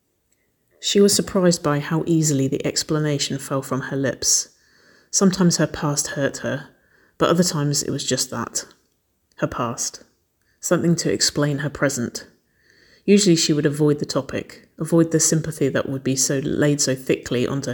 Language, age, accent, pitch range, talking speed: English, 30-49, British, 140-185 Hz, 160 wpm